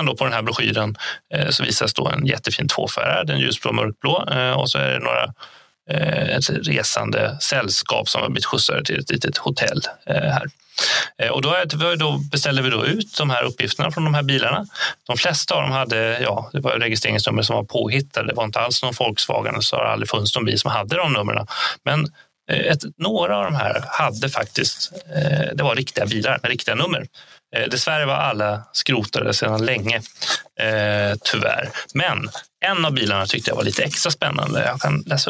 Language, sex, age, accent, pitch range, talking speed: Swedish, male, 30-49, native, 110-145 Hz, 185 wpm